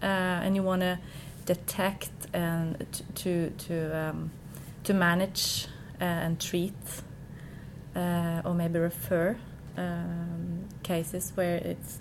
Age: 30-49